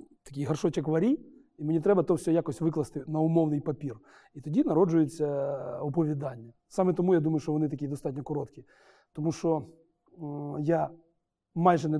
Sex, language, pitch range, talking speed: male, Ukrainian, 145-165 Hz, 160 wpm